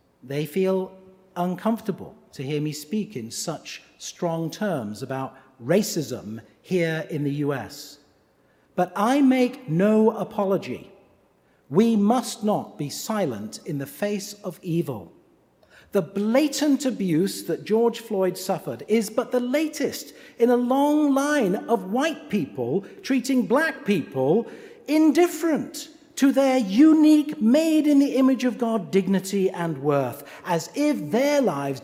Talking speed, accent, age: 130 wpm, British, 50-69